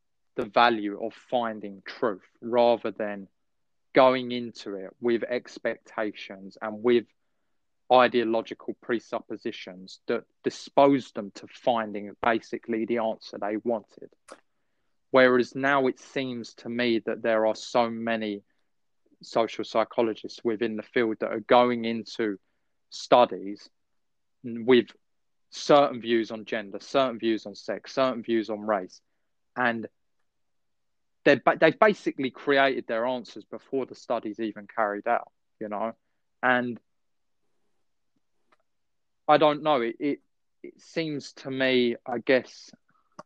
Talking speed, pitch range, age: 120 wpm, 110-130 Hz, 20-39